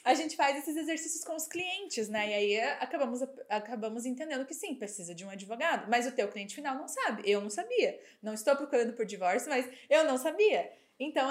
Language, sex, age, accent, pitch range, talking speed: Portuguese, female, 20-39, Brazilian, 225-315 Hz, 210 wpm